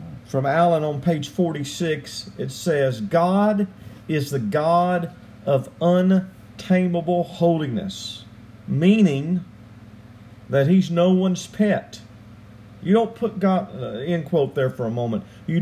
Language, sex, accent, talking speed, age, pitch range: English, male, American, 125 wpm, 50-69, 115-185 Hz